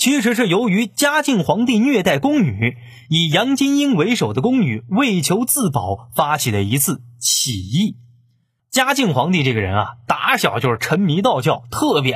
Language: Chinese